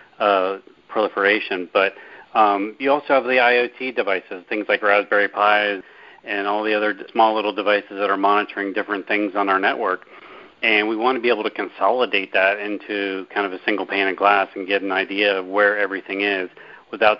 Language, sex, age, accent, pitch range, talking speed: English, male, 40-59, American, 100-120 Hz, 190 wpm